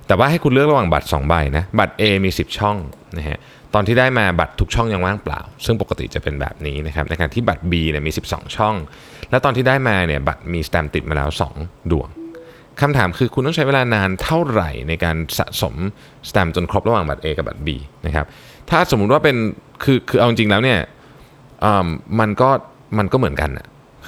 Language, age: Thai, 20-39